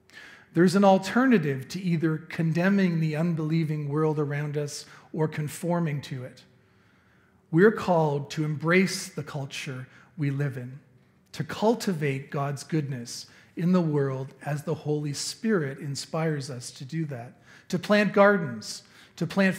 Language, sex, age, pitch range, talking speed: English, male, 40-59, 145-190 Hz, 140 wpm